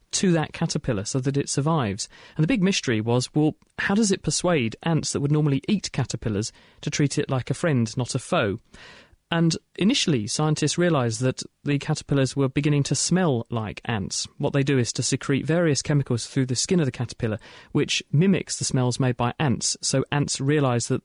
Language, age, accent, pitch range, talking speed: English, 40-59, British, 125-170 Hz, 200 wpm